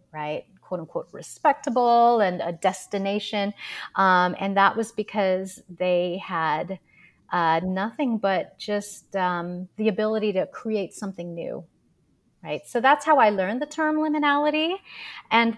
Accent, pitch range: American, 185-235 Hz